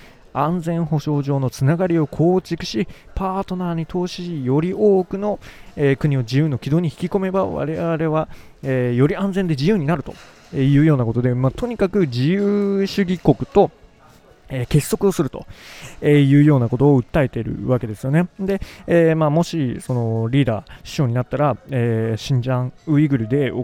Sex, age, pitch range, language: male, 20-39, 125-165 Hz, Japanese